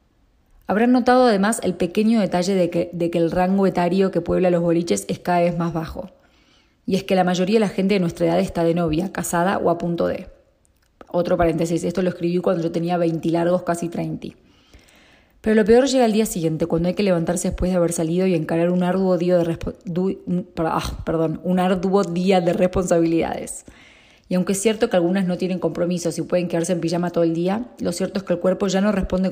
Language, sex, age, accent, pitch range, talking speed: Spanish, female, 20-39, Argentinian, 170-185 Hz, 225 wpm